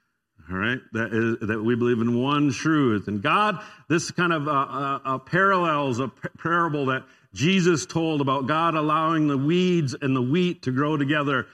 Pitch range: 135-175 Hz